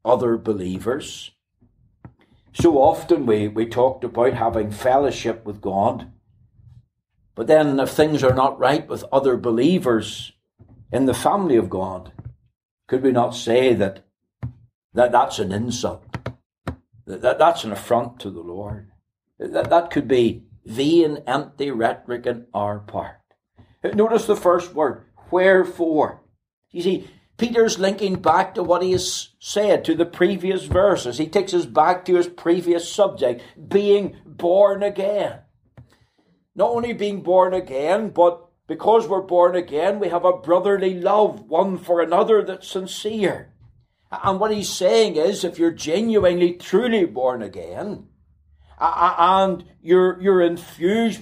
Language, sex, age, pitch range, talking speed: English, male, 60-79, 120-185 Hz, 135 wpm